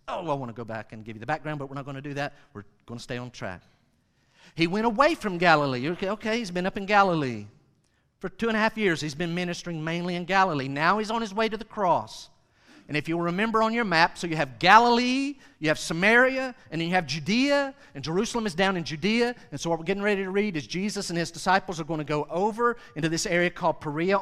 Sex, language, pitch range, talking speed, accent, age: male, English, 135-190 Hz, 260 wpm, American, 50-69